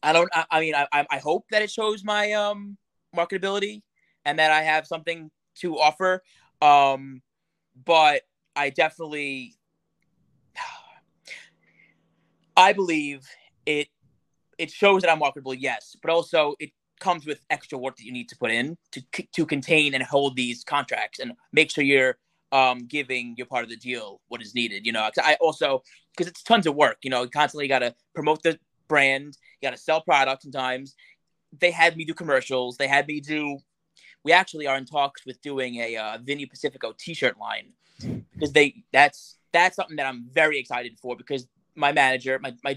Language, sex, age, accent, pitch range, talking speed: English, male, 20-39, American, 130-165 Hz, 180 wpm